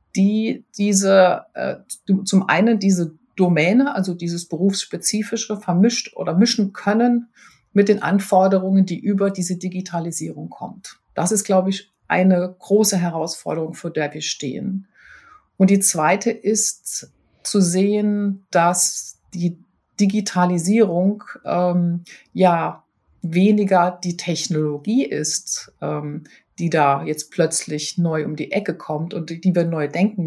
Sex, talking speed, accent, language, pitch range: female, 125 wpm, German, German, 165-200 Hz